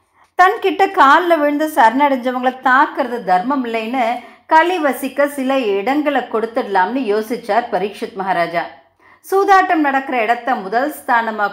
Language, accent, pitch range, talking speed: Tamil, native, 225-300 Hz, 100 wpm